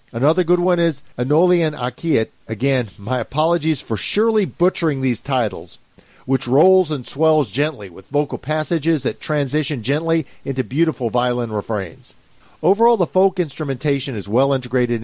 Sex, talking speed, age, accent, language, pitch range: male, 145 wpm, 50-69, American, English, 120-165 Hz